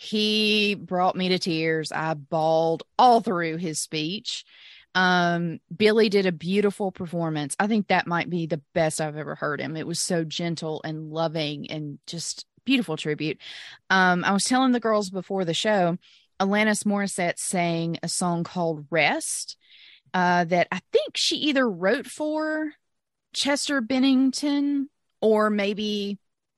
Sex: female